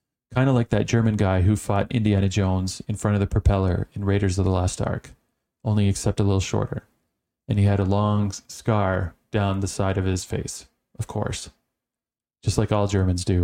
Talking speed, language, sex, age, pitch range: 200 wpm, English, male, 30-49, 95-110 Hz